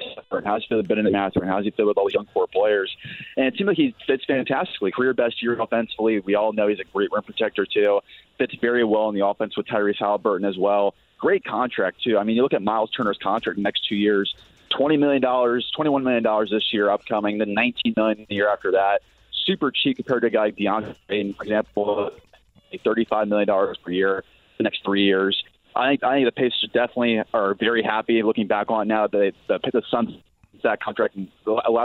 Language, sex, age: English, male, 20-39